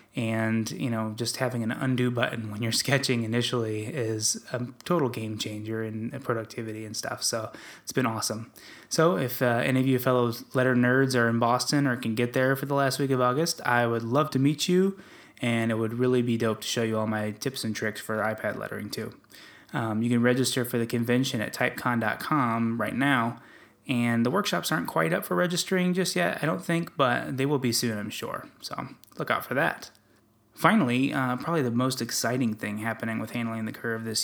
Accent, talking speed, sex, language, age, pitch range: American, 210 wpm, male, English, 10-29, 115-140 Hz